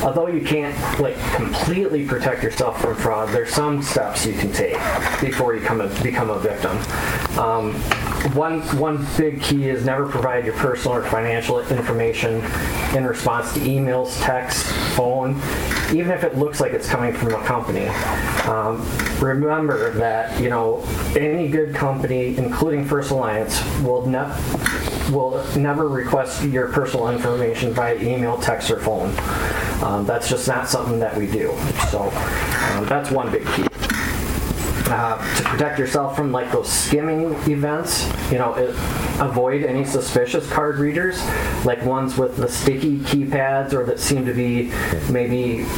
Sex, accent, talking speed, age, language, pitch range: male, American, 155 wpm, 20-39, English, 120-145 Hz